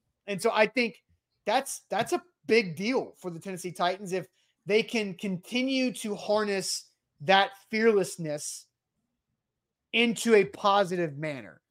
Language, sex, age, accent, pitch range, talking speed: English, male, 30-49, American, 170-210 Hz, 130 wpm